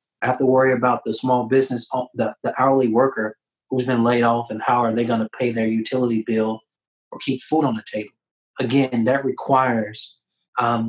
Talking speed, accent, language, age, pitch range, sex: 200 wpm, American, English, 30-49, 115-130 Hz, male